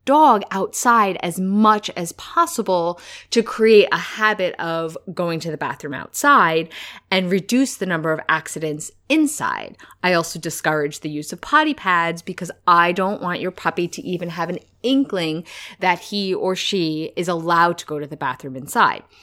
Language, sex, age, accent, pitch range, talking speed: English, female, 20-39, American, 165-215 Hz, 170 wpm